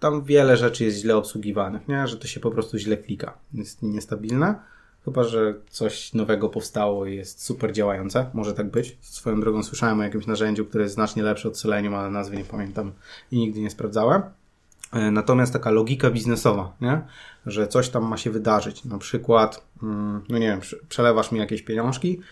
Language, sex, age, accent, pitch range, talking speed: Polish, male, 20-39, native, 110-130 Hz, 185 wpm